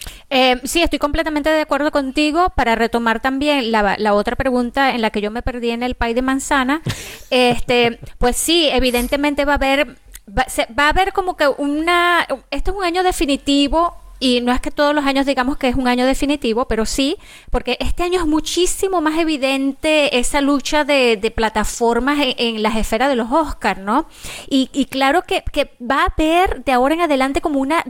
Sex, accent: female, American